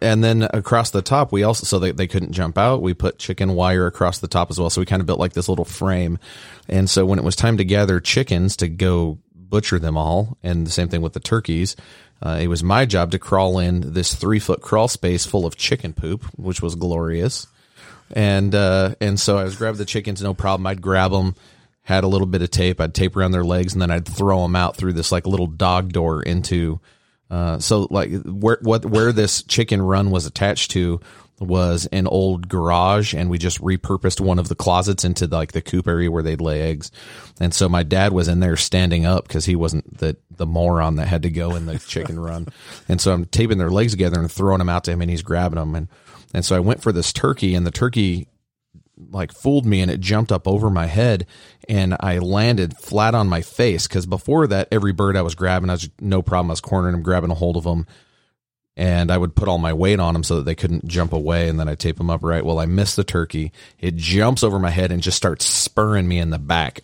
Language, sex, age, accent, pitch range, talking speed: English, male, 30-49, American, 85-100 Hz, 245 wpm